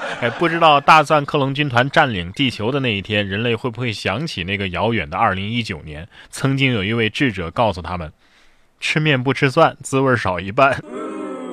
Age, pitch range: 20-39, 105-145 Hz